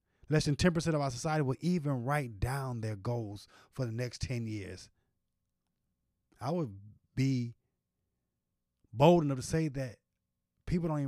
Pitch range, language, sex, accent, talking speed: 110-160 Hz, English, male, American, 150 wpm